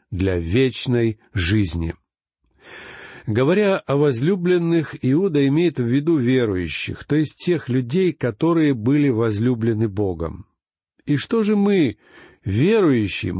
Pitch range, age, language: 115-165 Hz, 60-79, Russian